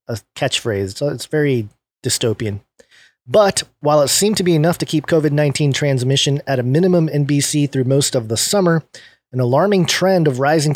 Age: 30-49